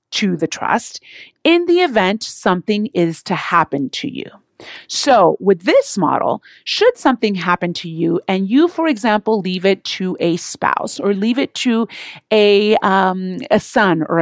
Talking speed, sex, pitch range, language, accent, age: 165 wpm, female, 185-250 Hz, English, American, 40-59